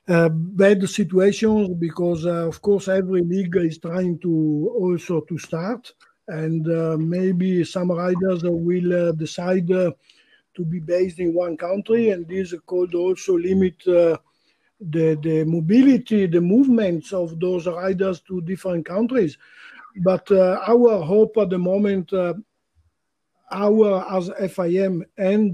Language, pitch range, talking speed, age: English, 175-195 Hz, 140 wpm, 50-69